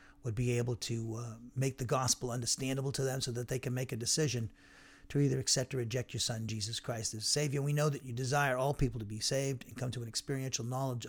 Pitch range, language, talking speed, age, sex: 115-145 Hz, English, 245 wpm, 40-59, male